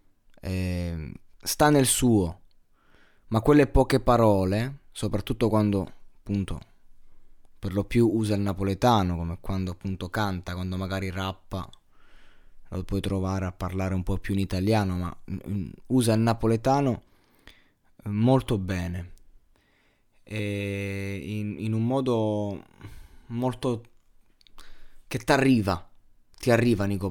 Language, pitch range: Italian, 95-115 Hz